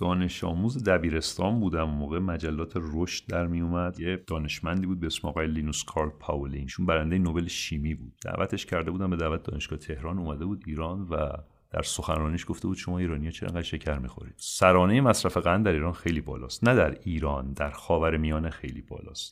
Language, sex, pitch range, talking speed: English, male, 75-90 Hz, 170 wpm